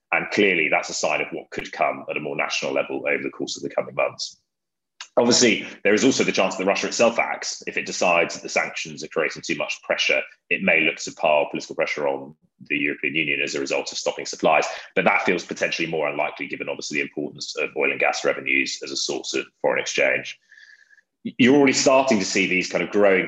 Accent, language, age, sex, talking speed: British, English, 30-49, male, 230 wpm